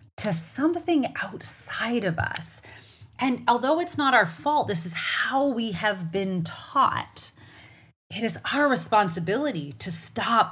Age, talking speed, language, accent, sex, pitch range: 30-49, 135 wpm, English, American, female, 155-205 Hz